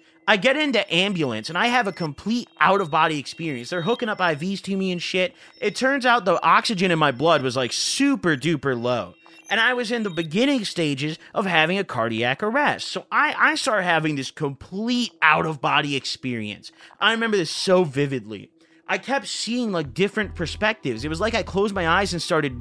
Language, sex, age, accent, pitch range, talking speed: English, male, 30-49, American, 150-210 Hz, 195 wpm